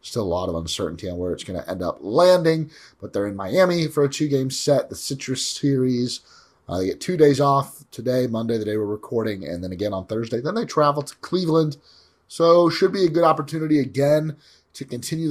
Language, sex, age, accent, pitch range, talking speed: English, male, 30-49, American, 100-145 Hz, 215 wpm